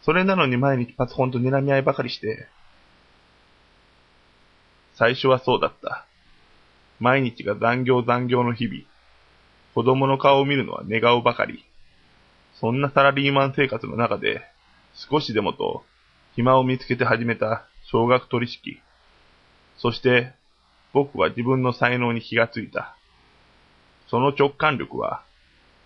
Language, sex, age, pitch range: Japanese, male, 20-39, 105-135 Hz